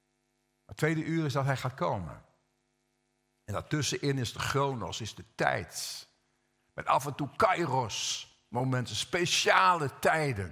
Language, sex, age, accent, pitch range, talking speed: Dutch, male, 50-69, Dutch, 120-175 Hz, 135 wpm